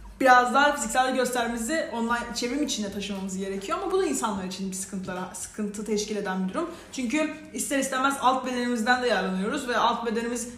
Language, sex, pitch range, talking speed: Turkish, female, 215-255 Hz, 175 wpm